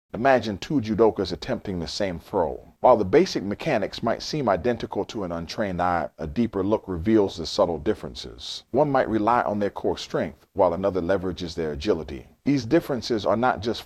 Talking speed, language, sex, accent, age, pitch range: 180 wpm, English, male, American, 40-59, 85-110 Hz